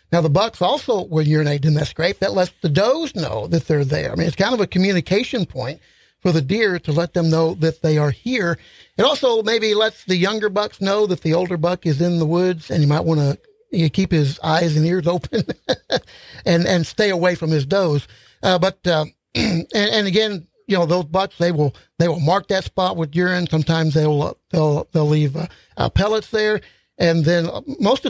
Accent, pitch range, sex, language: American, 160-195 Hz, male, English